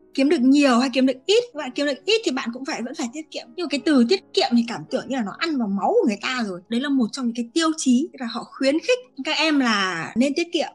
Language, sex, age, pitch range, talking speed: Vietnamese, female, 20-39, 215-275 Hz, 320 wpm